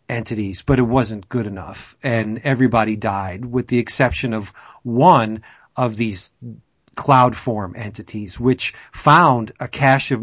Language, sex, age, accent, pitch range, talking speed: English, male, 40-59, American, 115-140 Hz, 140 wpm